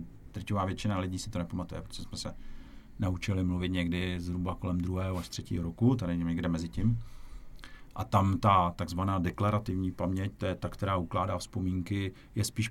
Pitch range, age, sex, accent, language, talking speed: 90-115 Hz, 50-69, male, native, Czech, 175 wpm